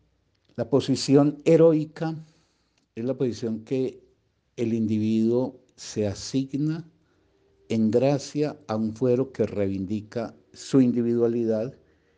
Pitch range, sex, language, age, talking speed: 100-130 Hz, male, Spanish, 50-69, 100 wpm